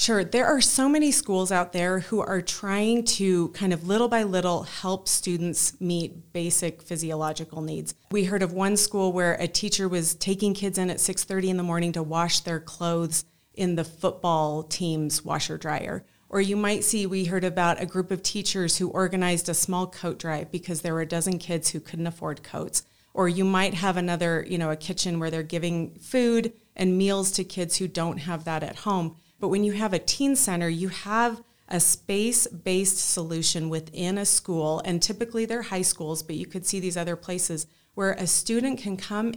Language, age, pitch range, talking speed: English, 30-49, 170-195 Hz, 200 wpm